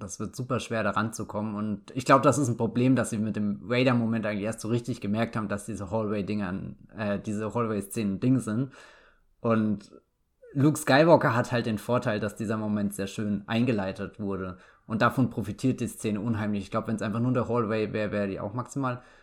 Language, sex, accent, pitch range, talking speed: English, male, German, 105-125 Hz, 200 wpm